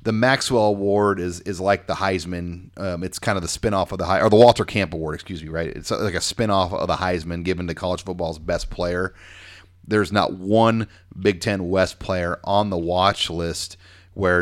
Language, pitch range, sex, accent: English, 90-105 Hz, male, American